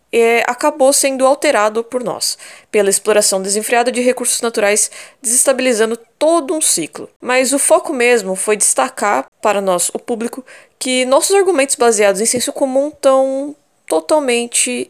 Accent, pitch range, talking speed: Brazilian, 205-285 Hz, 140 wpm